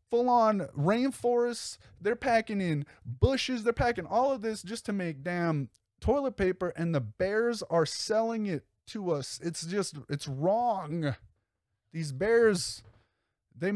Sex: male